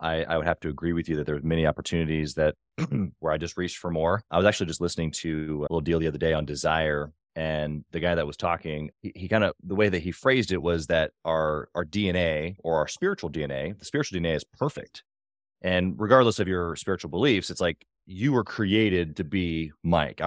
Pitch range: 80-105 Hz